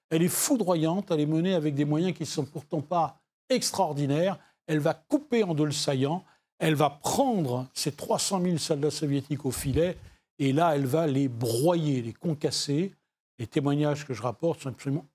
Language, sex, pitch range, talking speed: French, male, 135-175 Hz, 185 wpm